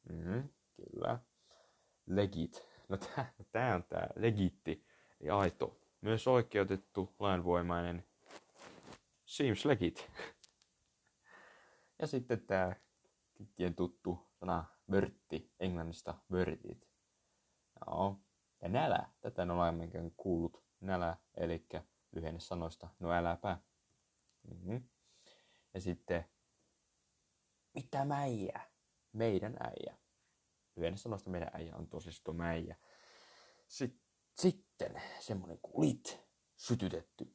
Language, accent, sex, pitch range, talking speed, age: Finnish, native, male, 85-105 Hz, 95 wpm, 30-49